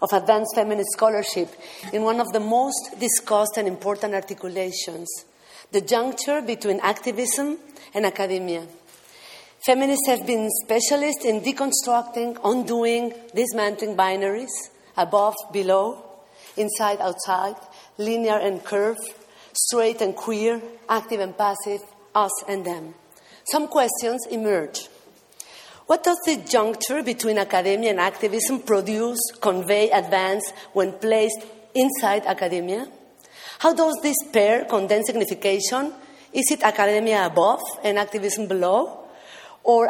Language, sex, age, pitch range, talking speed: English, female, 40-59, 200-235 Hz, 115 wpm